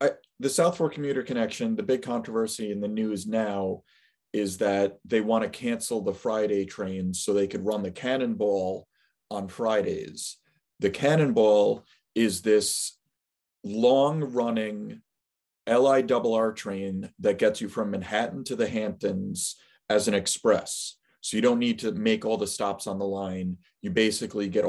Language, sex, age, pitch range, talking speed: English, male, 30-49, 100-140 Hz, 155 wpm